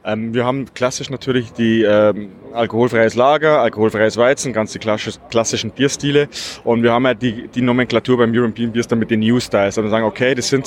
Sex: male